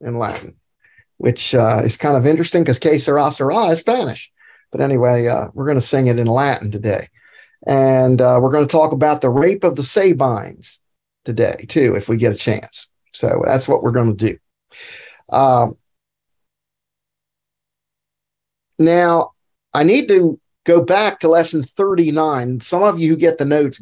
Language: English